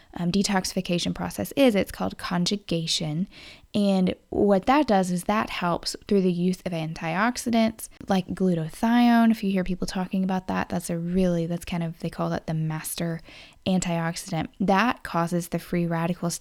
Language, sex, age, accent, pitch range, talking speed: English, female, 10-29, American, 165-200 Hz, 165 wpm